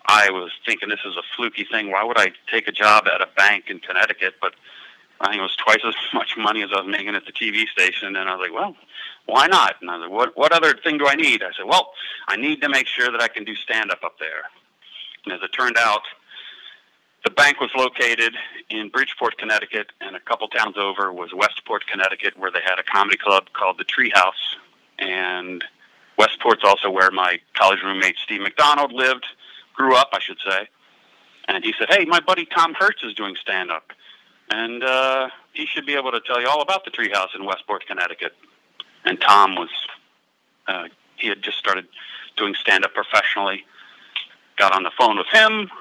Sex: male